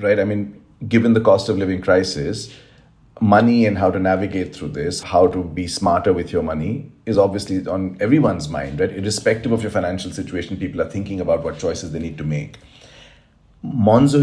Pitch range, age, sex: 95-115 Hz, 40-59, male